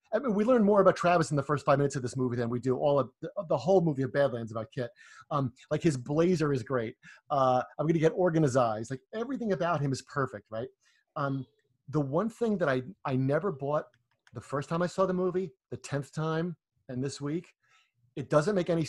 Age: 30-49